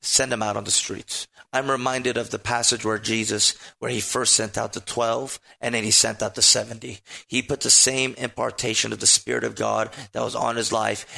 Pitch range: 120-145 Hz